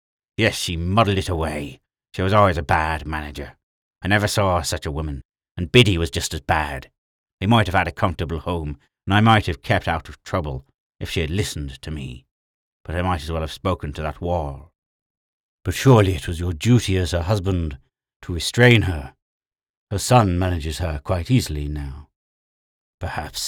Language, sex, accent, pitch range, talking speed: English, male, British, 75-95 Hz, 190 wpm